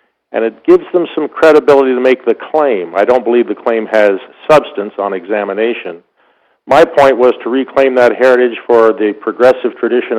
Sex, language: male, English